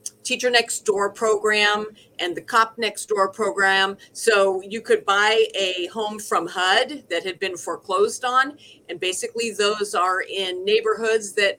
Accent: American